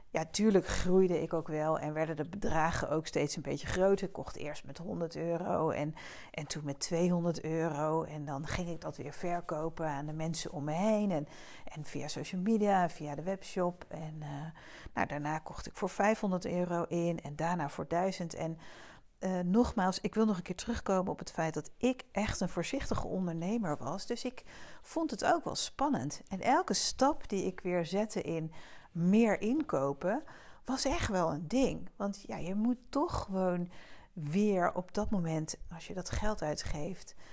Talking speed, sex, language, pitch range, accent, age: 190 wpm, female, Dutch, 160-200 Hz, Dutch, 40-59